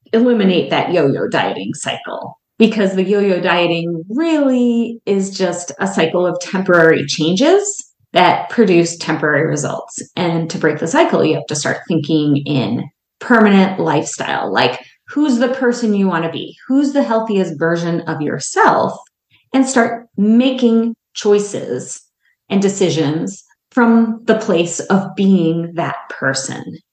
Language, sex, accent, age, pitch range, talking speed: English, female, American, 30-49, 170-240 Hz, 135 wpm